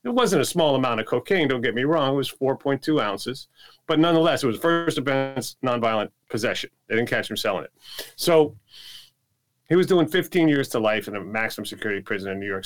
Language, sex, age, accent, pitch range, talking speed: English, male, 40-59, American, 110-140 Hz, 215 wpm